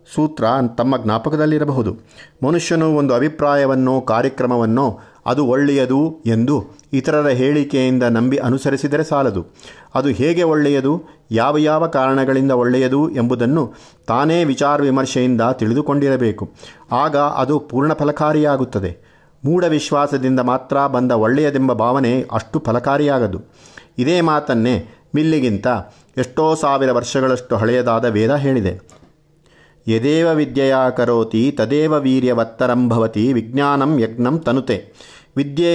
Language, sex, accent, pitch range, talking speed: Kannada, male, native, 120-145 Hz, 95 wpm